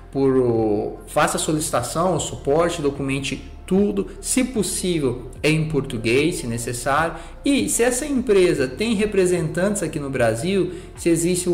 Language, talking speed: Portuguese, 125 wpm